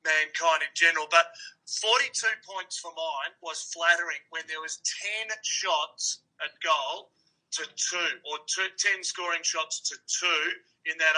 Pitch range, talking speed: 170-230 Hz, 145 wpm